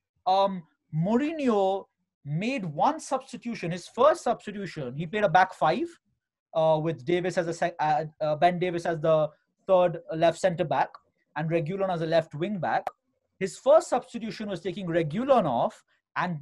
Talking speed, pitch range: 155 wpm, 175-235 Hz